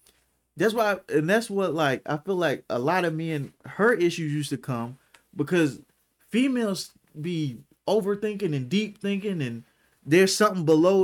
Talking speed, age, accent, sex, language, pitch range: 160 wpm, 20-39, American, male, English, 145-215 Hz